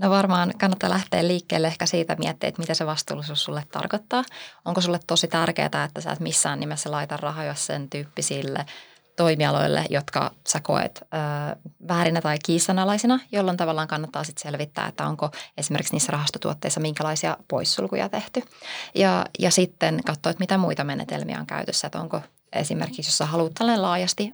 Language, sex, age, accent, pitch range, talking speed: Finnish, female, 20-39, native, 155-190 Hz, 155 wpm